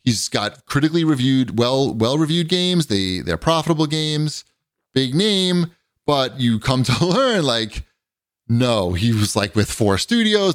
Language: English